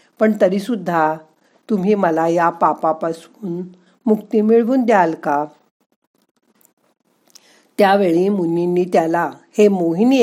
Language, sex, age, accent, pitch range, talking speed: Marathi, female, 50-69, native, 165-225 Hz, 95 wpm